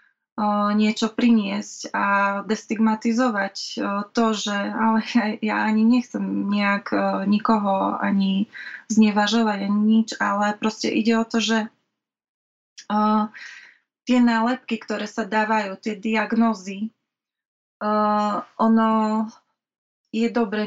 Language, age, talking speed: Slovak, 20-39, 100 wpm